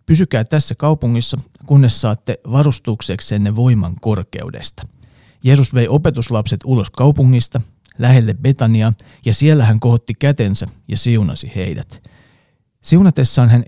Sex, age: male, 40-59